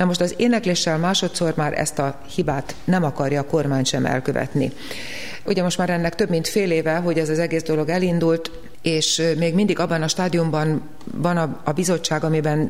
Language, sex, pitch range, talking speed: Hungarian, female, 155-175 Hz, 185 wpm